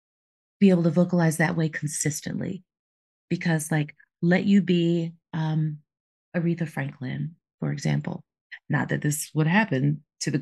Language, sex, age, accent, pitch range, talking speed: English, female, 40-59, American, 160-205 Hz, 140 wpm